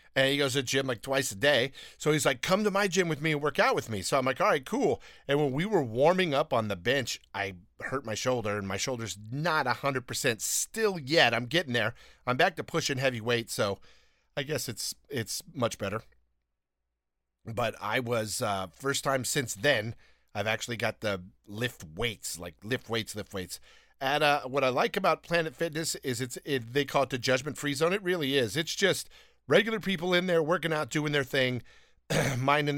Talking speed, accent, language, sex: 215 wpm, American, English, male